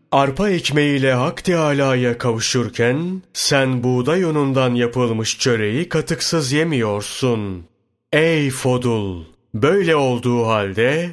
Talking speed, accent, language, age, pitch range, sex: 90 wpm, native, Turkish, 40-59, 115-150 Hz, male